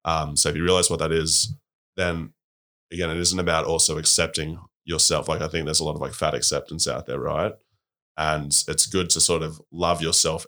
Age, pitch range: 20-39, 80-85 Hz